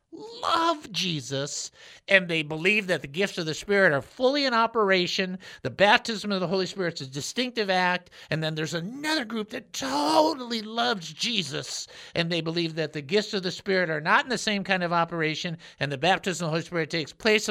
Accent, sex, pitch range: American, male, 160-210 Hz